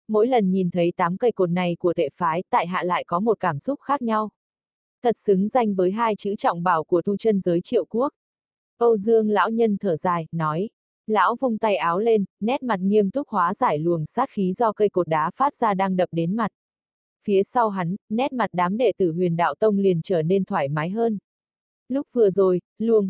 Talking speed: 225 wpm